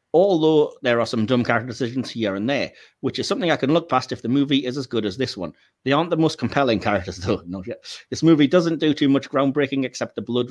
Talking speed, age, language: 255 wpm, 30-49, English